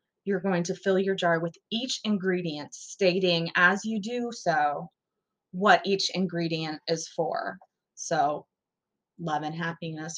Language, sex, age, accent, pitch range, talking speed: English, female, 20-39, American, 170-205 Hz, 135 wpm